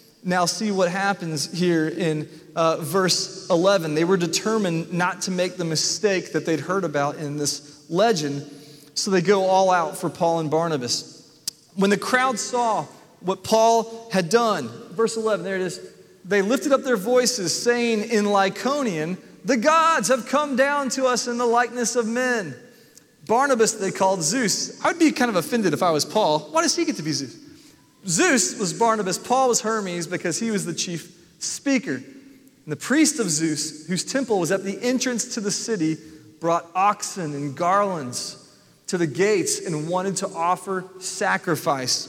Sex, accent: male, American